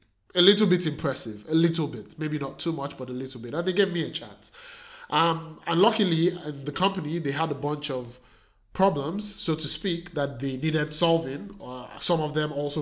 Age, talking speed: 20-39, 205 wpm